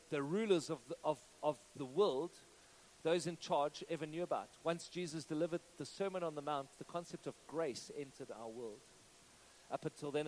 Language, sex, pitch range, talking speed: English, male, 140-185 Hz, 175 wpm